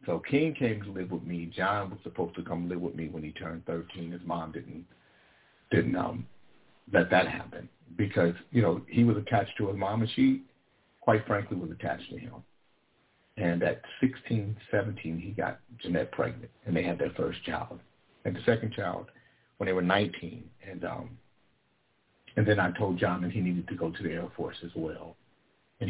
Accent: American